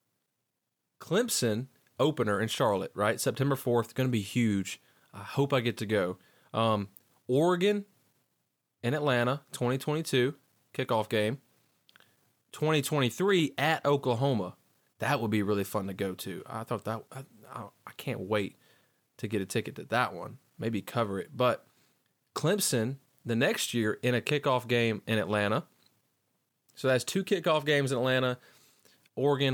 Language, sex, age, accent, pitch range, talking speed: English, male, 30-49, American, 110-140 Hz, 145 wpm